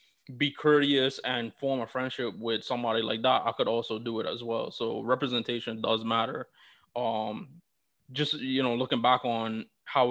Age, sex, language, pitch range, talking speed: 20-39, male, English, 115-125 Hz, 170 wpm